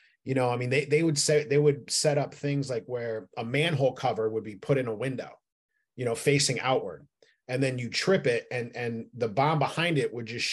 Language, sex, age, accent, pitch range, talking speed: English, male, 30-49, American, 115-150 Hz, 235 wpm